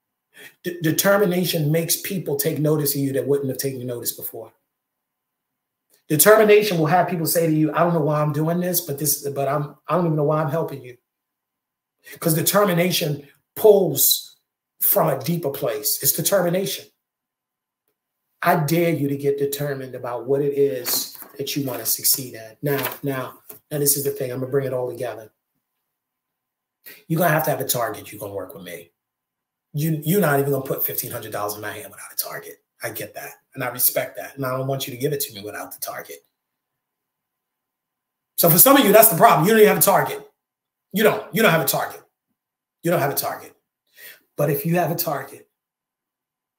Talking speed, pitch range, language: 200 wpm, 140-210 Hz, English